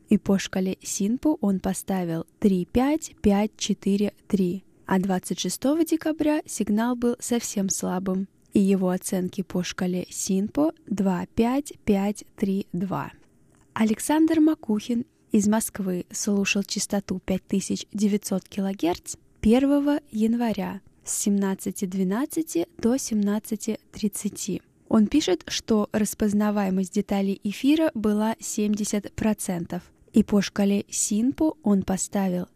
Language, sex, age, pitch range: Russian, female, 10-29, 195-235 Hz